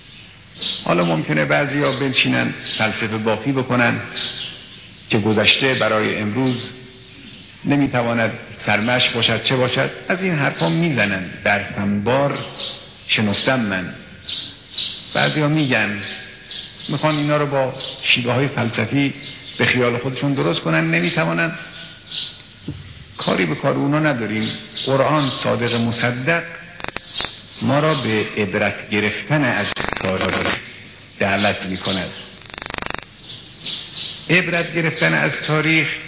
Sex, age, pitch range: male, 60-79, 105-140 Hz